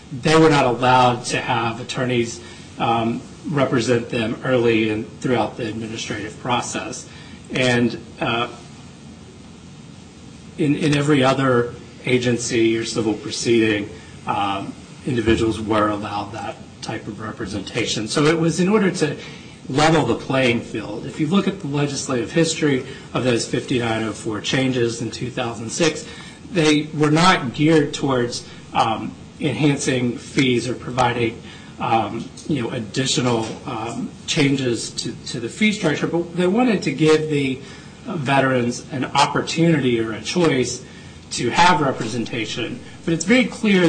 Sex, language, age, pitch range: male, English, 40-59, 115-160 Hz